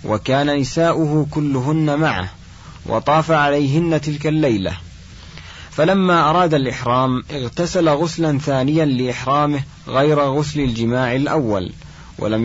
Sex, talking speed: male, 95 wpm